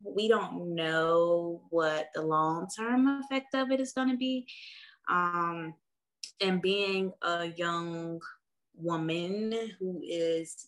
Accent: American